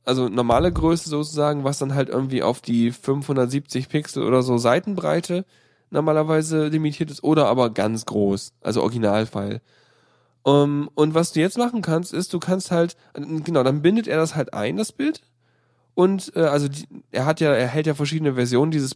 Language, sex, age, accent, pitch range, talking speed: German, male, 10-29, German, 130-160 Hz, 175 wpm